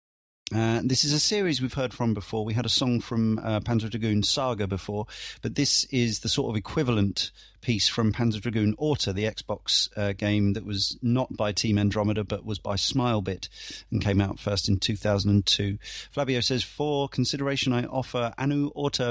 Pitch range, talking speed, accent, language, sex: 105-130 Hz, 180 wpm, British, English, male